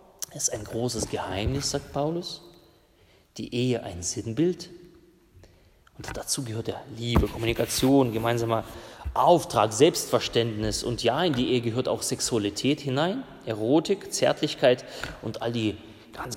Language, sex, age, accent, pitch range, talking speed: German, male, 30-49, German, 115-140 Hz, 125 wpm